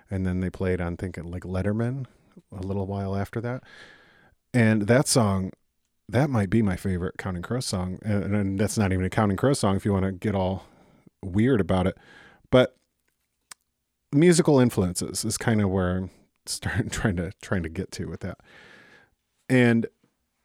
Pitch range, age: 95-110 Hz, 30-49